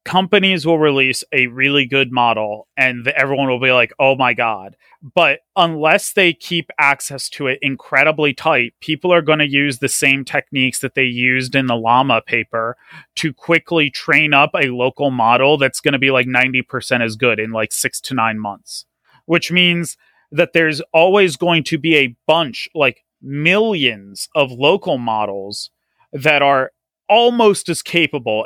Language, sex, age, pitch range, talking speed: English, male, 30-49, 130-160 Hz, 170 wpm